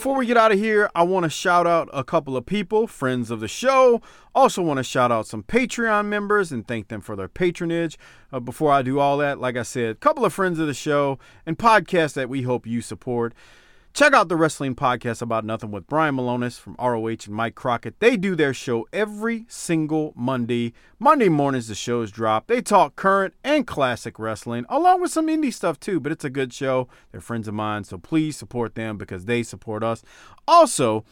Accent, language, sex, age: American, English, male, 40-59